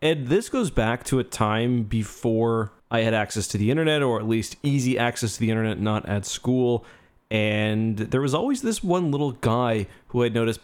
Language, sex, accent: English, male, American